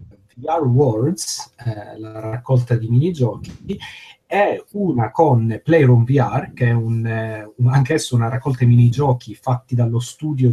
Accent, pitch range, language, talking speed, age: native, 110-130 Hz, Italian, 140 wpm, 30-49